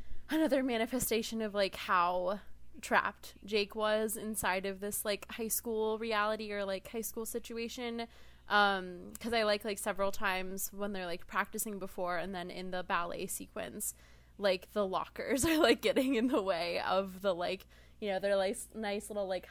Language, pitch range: English, 190-230 Hz